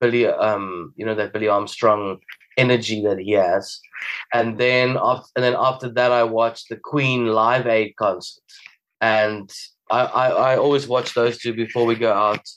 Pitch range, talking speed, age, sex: 110-130 Hz, 175 wpm, 20-39, male